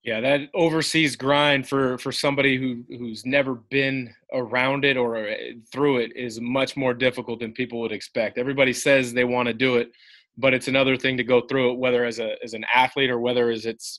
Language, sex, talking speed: English, male, 205 wpm